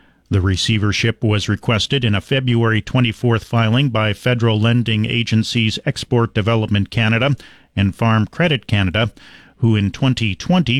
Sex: male